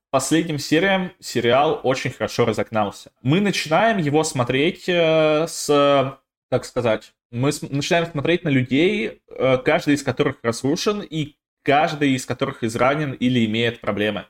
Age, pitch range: 20-39, 115-150 Hz